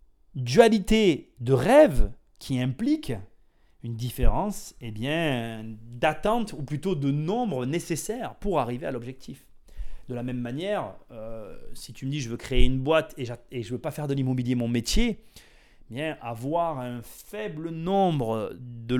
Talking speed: 160 wpm